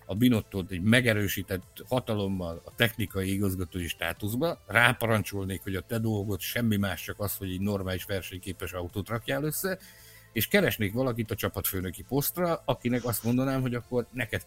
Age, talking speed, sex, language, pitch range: 60-79, 155 wpm, male, Hungarian, 100-125 Hz